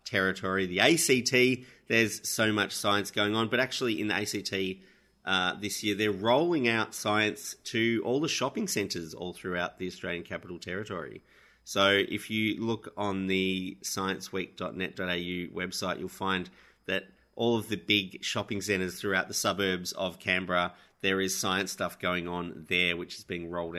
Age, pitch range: 30-49, 90-105 Hz